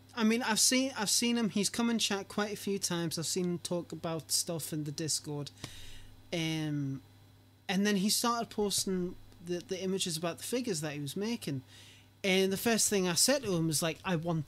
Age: 30-49